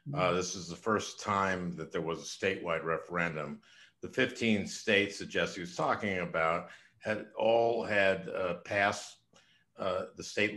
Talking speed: 160 wpm